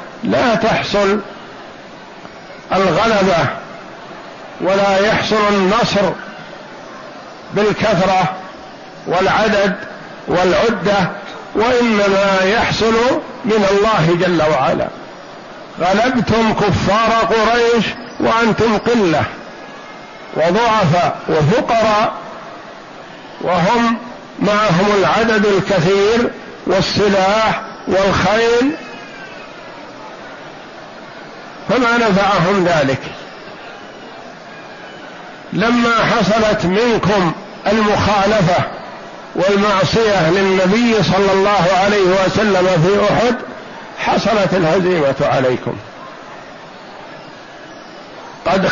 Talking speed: 60 wpm